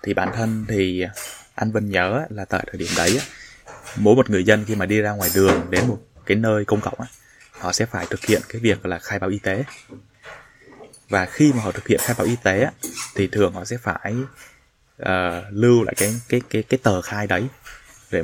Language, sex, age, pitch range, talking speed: Vietnamese, male, 20-39, 100-115 Hz, 215 wpm